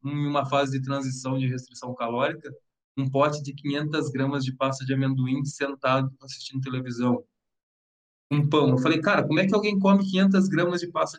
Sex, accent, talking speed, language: male, Brazilian, 180 wpm, Portuguese